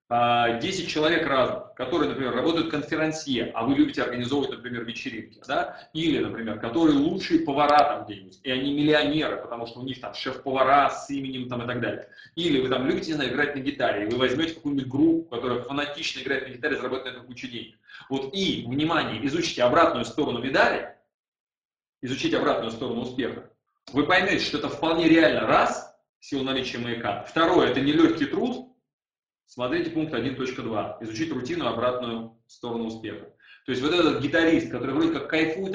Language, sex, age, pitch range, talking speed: Russian, male, 30-49, 125-165 Hz, 170 wpm